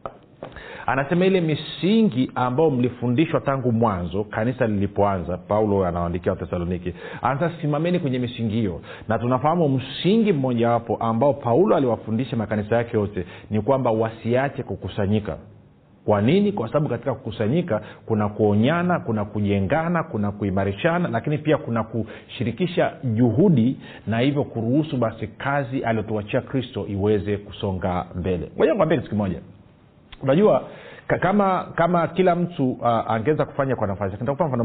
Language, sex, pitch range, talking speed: Swahili, male, 105-140 Hz, 130 wpm